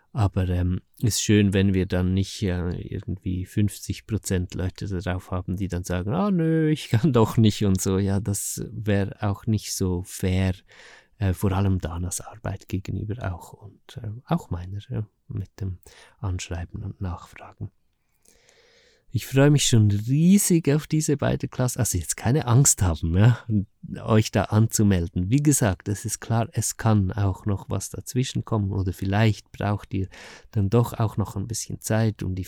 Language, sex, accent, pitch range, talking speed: German, male, German, 95-115 Hz, 170 wpm